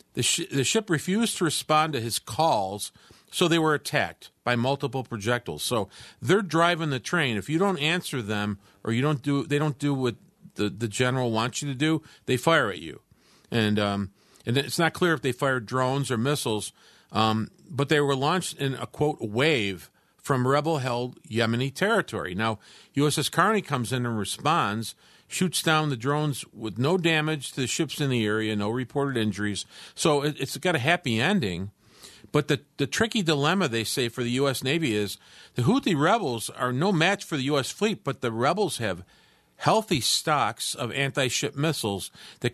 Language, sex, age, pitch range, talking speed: English, male, 50-69, 115-155 Hz, 190 wpm